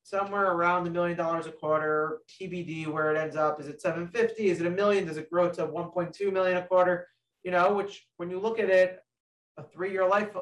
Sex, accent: male, American